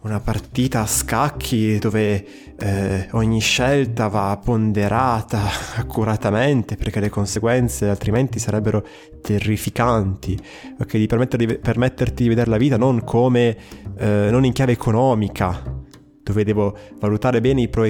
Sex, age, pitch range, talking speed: male, 20-39, 100-120 Hz, 135 wpm